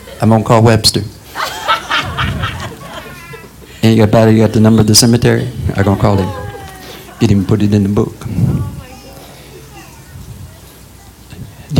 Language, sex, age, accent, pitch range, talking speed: English, male, 60-79, American, 100-135 Hz, 135 wpm